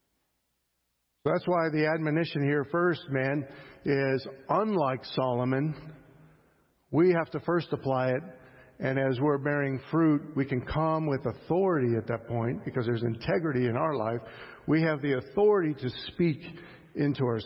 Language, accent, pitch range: English, American, 120-165 Hz